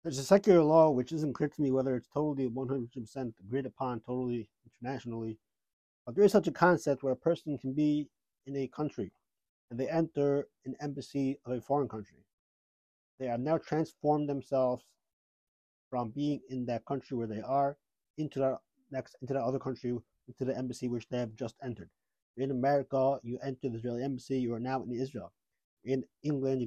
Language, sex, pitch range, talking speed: English, male, 125-145 Hz, 190 wpm